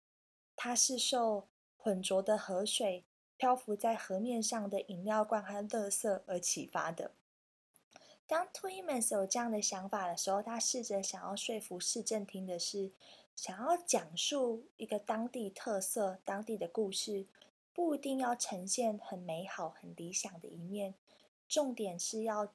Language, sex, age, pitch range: Chinese, female, 20-39, 195-240 Hz